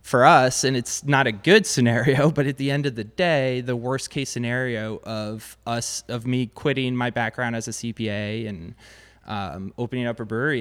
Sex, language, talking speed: male, English, 200 wpm